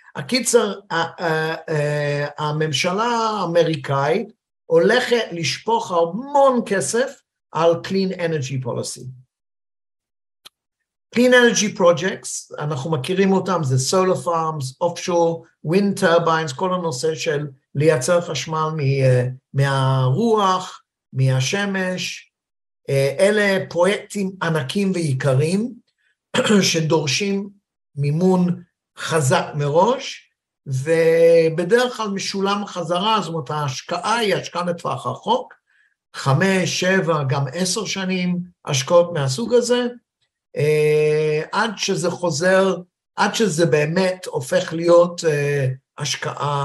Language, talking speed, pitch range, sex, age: Hebrew, 90 wpm, 150-195 Hz, male, 50-69